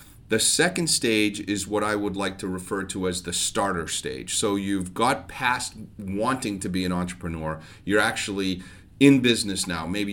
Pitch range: 90-115 Hz